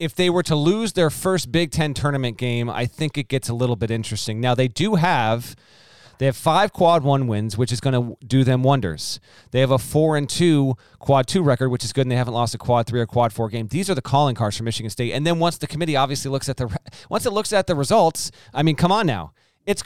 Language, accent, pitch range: English, American, 120-165 Hz